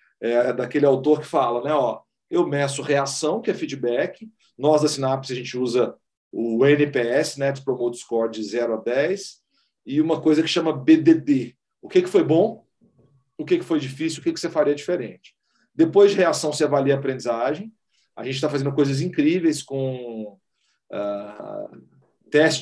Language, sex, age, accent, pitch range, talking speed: Portuguese, male, 40-59, Brazilian, 135-185 Hz, 185 wpm